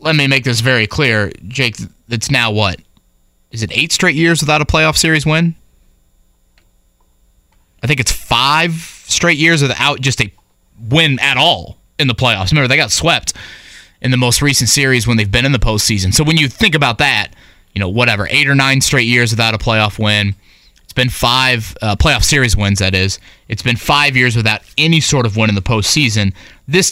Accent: American